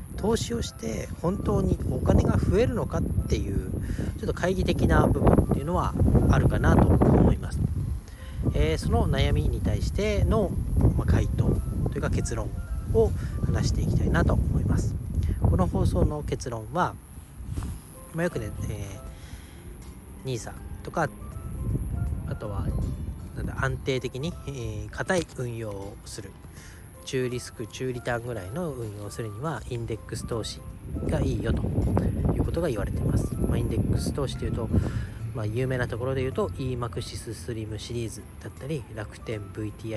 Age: 40-59